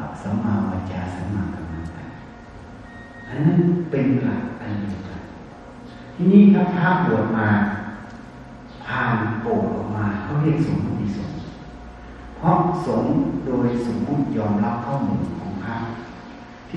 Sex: male